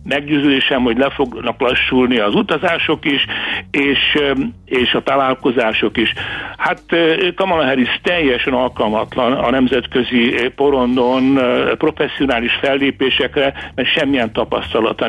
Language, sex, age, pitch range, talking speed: Hungarian, male, 60-79, 115-140 Hz, 100 wpm